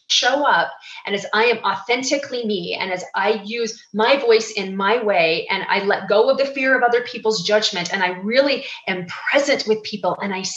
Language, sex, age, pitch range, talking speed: English, female, 30-49, 200-275 Hz, 210 wpm